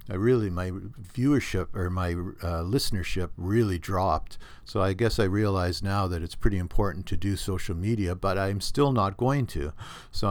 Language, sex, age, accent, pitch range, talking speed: English, male, 50-69, American, 90-115 Hz, 180 wpm